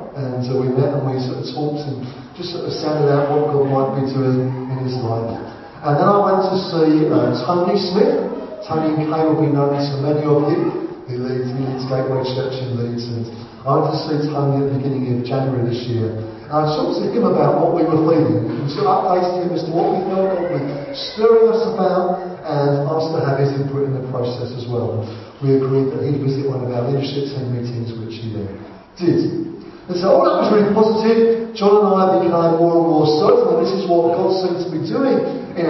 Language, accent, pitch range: English, British, 135-175 Hz